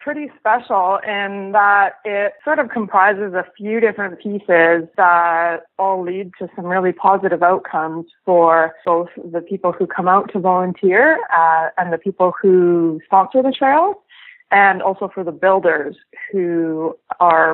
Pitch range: 175-240 Hz